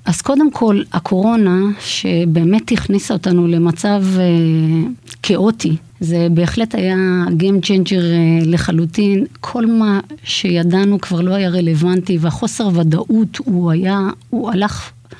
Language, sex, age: Hebrew, female, 30-49